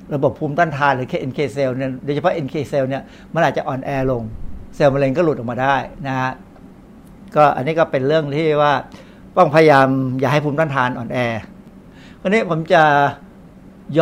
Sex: male